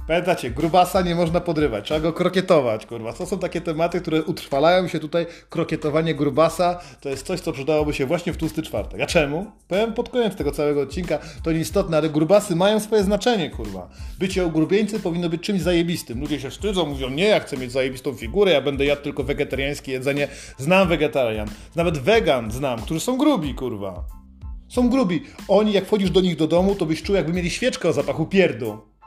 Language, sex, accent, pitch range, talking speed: Polish, male, native, 145-195 Hz, 195 wpm